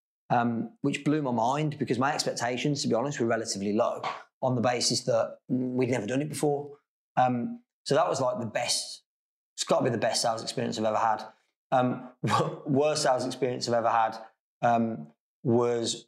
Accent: British